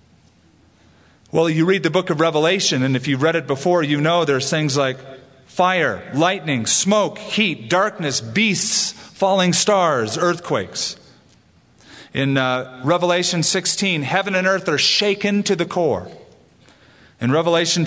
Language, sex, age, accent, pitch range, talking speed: English, male, 40-59, American, 130-185 Hz, 140 wpm